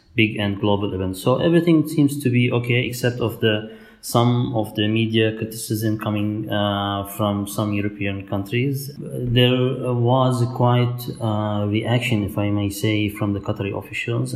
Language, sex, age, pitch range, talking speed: English, male, 30-49, 105-120 Hz, 155 wpm